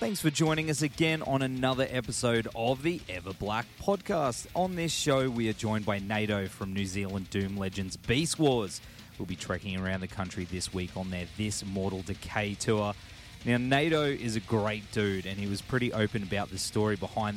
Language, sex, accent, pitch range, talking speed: English, male, Australian, 95-115 Hz, 195 wpm